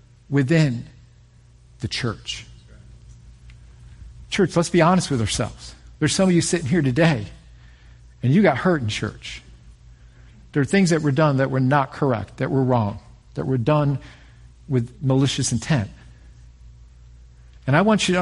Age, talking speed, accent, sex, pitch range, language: 50-69, 150 wpm, American, male, 115-170 Hz, English